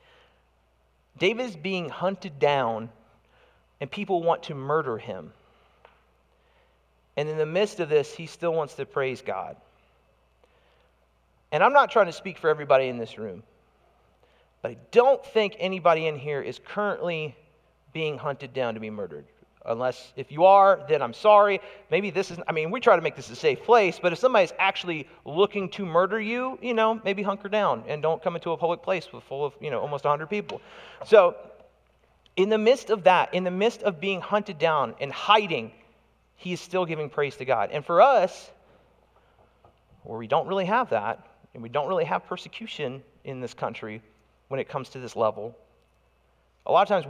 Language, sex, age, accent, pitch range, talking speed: English, male, 40-59, American, 135-200 Hz, 185 wpm